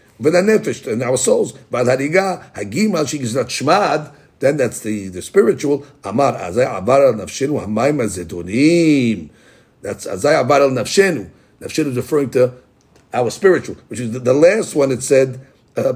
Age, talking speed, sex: 50-69, 100 wpm, male